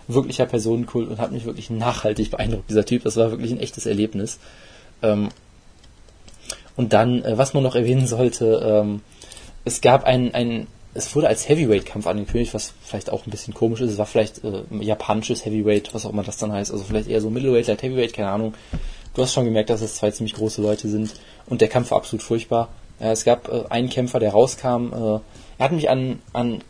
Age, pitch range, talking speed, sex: 20-39, 110-130 Hz, 215 wpm, male